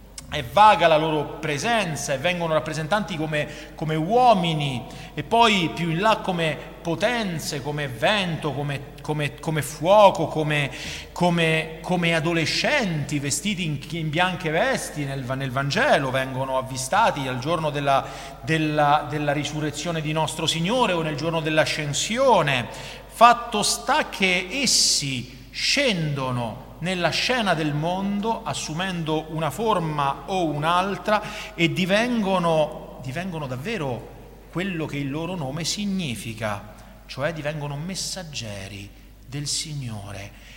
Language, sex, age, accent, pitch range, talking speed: Italian, male, 40-59, native, 145-180 Hz, 120 wpm